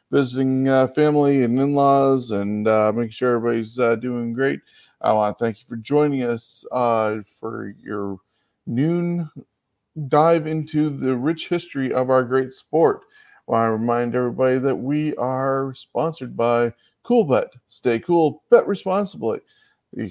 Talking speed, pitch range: 150 wpm, 120-155 Hz